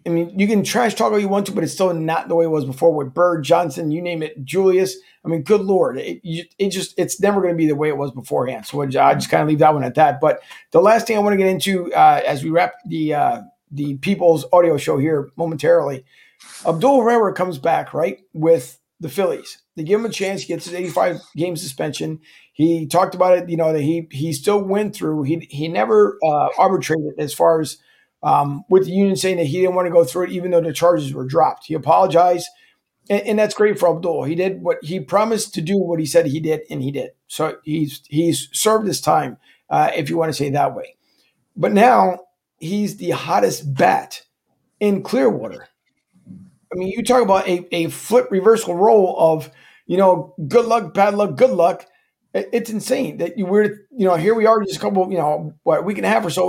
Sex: male